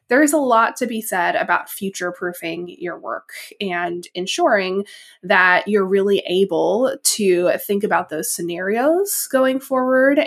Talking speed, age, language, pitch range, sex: 135 wpm, 20-39, English, 180-225 Hz, female